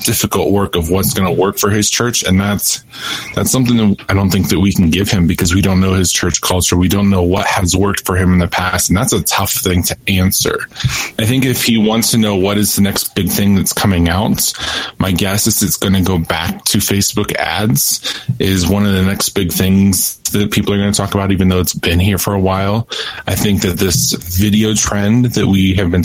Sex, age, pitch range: male, 20-39, 90-100 Hz